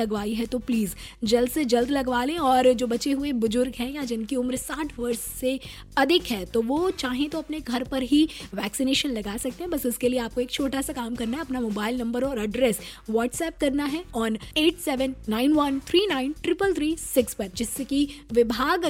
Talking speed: 200 wpm